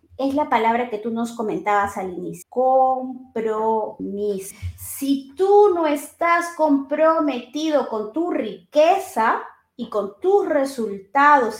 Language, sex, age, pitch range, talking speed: Spanish, female, 30-49, 235-315 Hz, 115 wpm